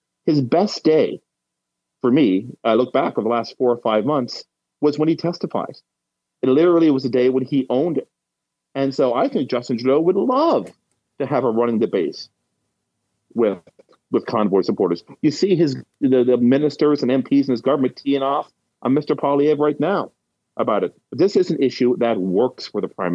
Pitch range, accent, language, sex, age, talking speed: 115-155 Hz, American, English, male, 40-59, 190 wpm